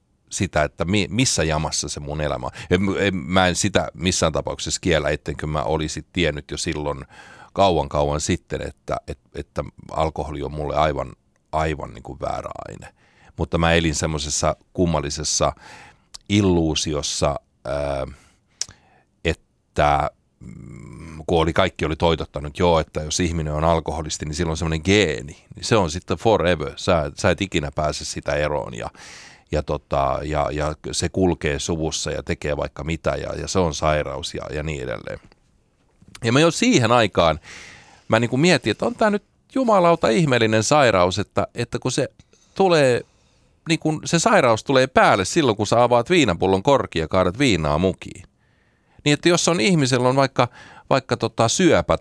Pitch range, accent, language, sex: 75-120 Hz, native, Finnish, male